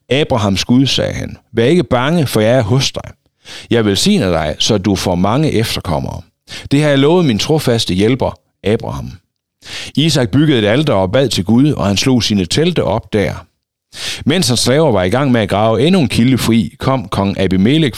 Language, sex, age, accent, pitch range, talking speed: Danish, male, 60-79, native, 95-135 Hz, 195 wpm